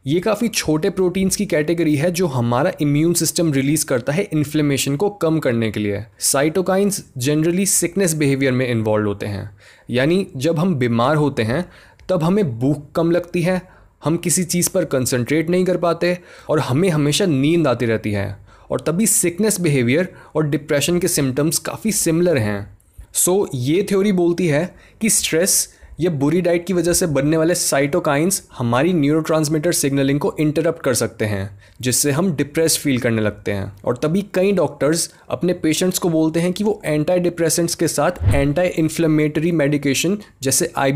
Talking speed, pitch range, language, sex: 170 wpm, 135-180 Hz, Hindi, male